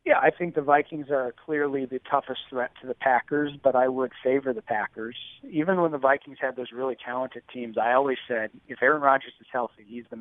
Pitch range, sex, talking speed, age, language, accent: 125-165 Hz, male, 225 wpm, 40-59, English, American